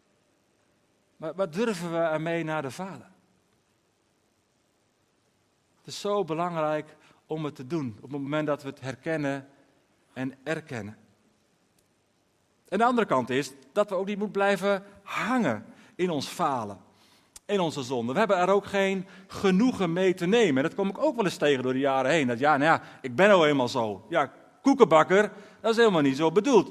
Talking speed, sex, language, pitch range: 180 wpm, male, Dutch, 155-210 Hz